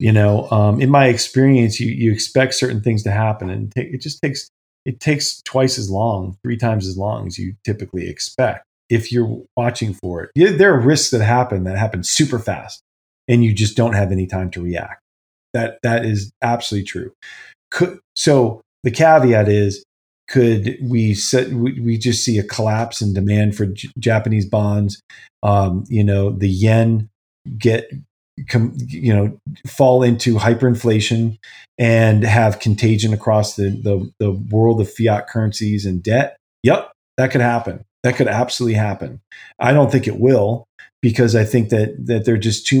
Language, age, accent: English, 40-59, American